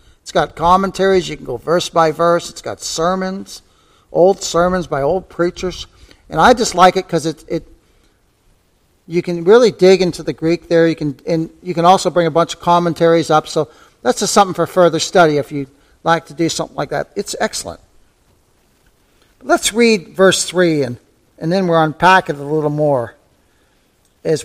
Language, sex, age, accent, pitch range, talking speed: English, male, 50-69, American, 150-185 Hz, 190 wpm